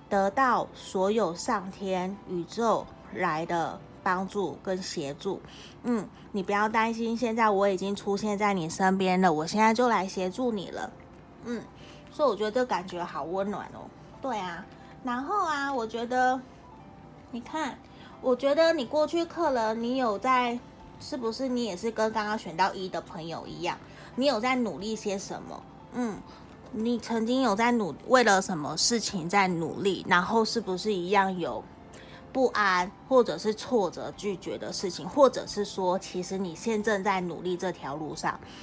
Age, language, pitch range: 20-39, Chinese, 185-230 Hz